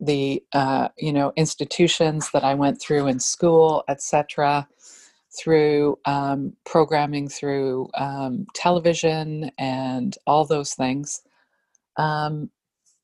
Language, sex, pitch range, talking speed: English, female, 145-175 Hz, 105 wpm